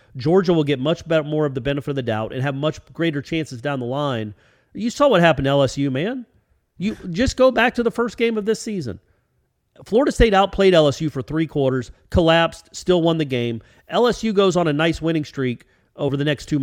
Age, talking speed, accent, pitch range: 40-59, 220 wpm, American, 125-190 Hz